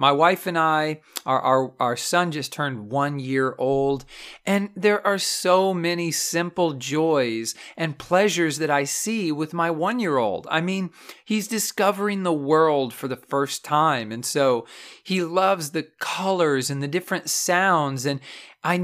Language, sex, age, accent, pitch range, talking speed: English, male, 40-59, American, 140-190 Hz, 165 wpm